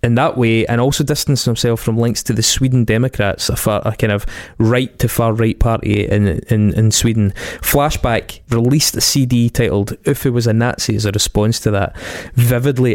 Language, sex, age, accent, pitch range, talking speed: English, male, 20-39, British, 110-125 Hz, 200 wpm